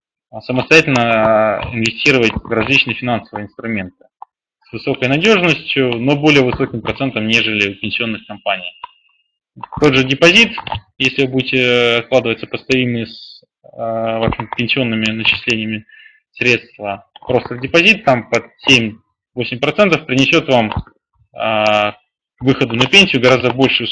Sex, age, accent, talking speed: male, 20-39, native, 105 wpm